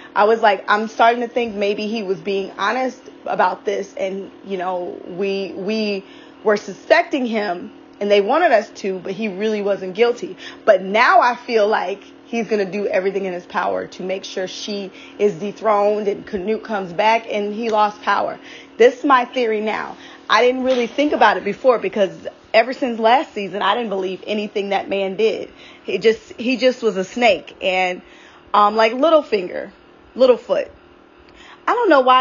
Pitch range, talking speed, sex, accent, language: 205-260 Hz, 185 wpm, female, American, English